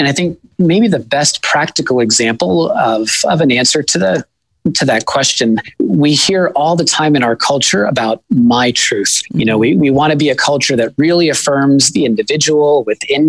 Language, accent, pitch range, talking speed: English, American, 120-150 Hz, 195 wpm